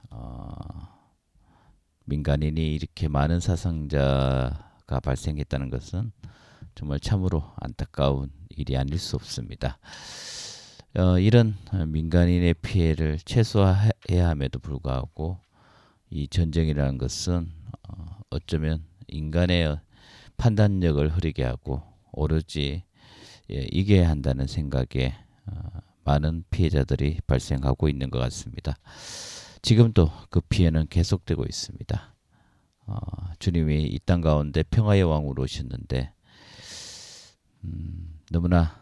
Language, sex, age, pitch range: Korean, male, 40-59, 75-100 Hz